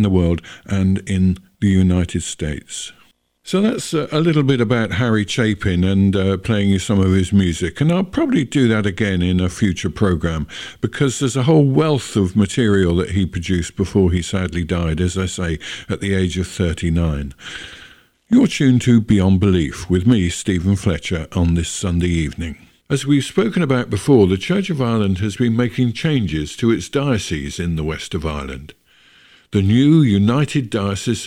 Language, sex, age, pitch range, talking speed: English, male, 50-69, 90-130 Hz, 180 wpm